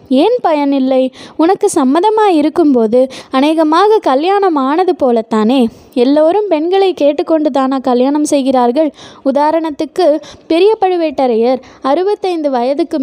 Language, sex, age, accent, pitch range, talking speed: Tamil, female, 20-39, native, 265-340 Hz, 90 wpm